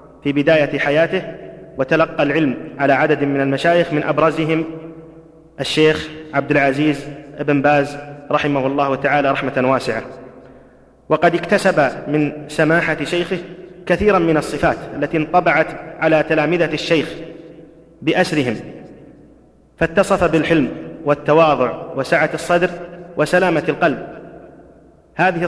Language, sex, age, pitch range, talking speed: Arabic, male, 30-49, 145-165 Hz, 100 wpm